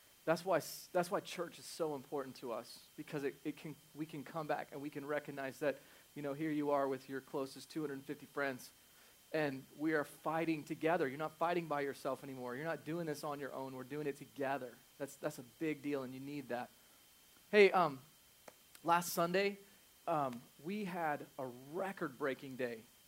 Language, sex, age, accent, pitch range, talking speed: English, male, 30-49, American, 140-190 Hz, 190 wpm